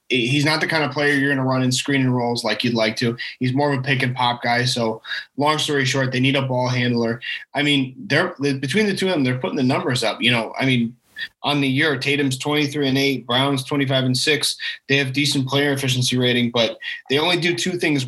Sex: male